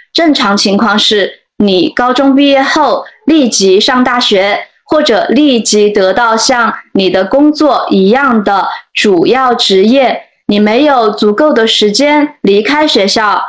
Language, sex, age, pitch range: Chinese, female, 20-39, 210-285 Hz